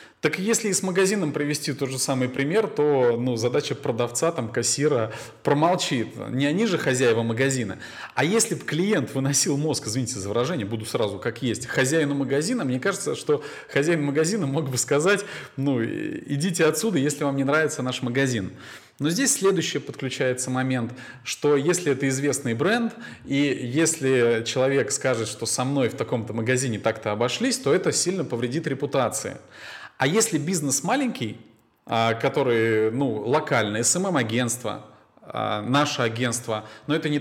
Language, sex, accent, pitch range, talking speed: Russian, male, native, 125-155 Hz, 150 wpm